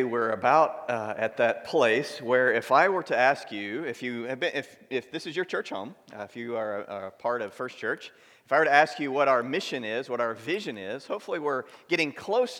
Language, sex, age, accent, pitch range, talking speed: English, male, 40-59, American, 115-155 Hz, 250 wpm